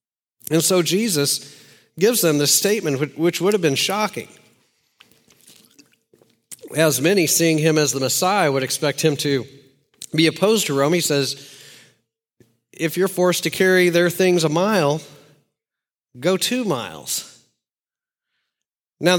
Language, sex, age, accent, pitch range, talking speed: English, male, 40-59, American, 135-175 Hz, 130 wpm